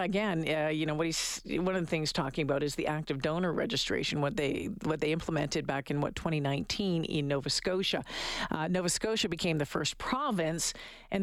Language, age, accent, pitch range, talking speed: English, 50-69, American, 160-195 Hz, 205 wpm